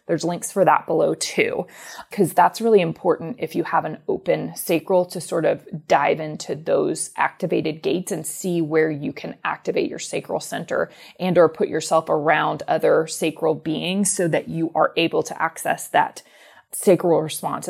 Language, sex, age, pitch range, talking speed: English, female, 20-39, 165-210 Hz, 175 wpm